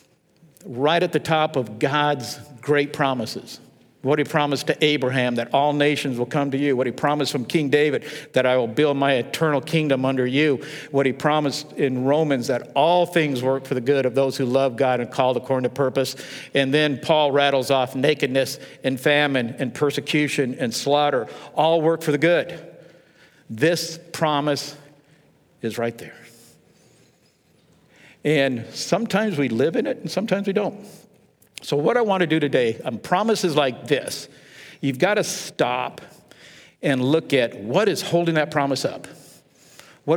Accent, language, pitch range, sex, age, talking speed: American, English, 135-160 Hz, male, 50-69, 170 wpm